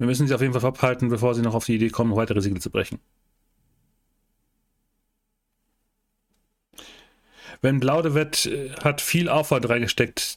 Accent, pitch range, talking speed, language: German, 115-150 Hz, 145 wpm, German